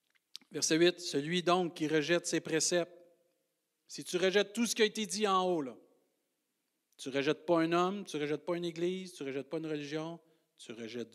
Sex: male